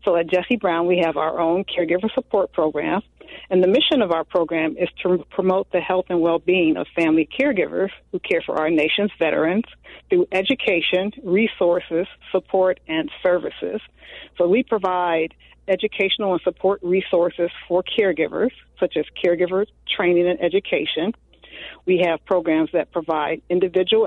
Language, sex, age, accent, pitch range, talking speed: English, female, 50-69, American, 170-205 Hz, 150 wpm